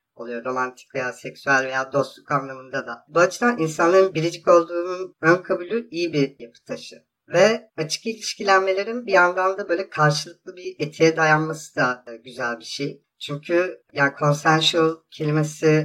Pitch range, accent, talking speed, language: 140-175 Hz, native, 135 wpm, Turkish